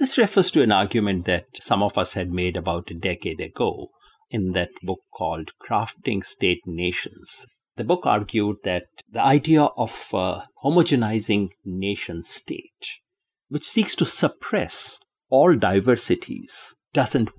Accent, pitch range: Indian, 100-150 Hz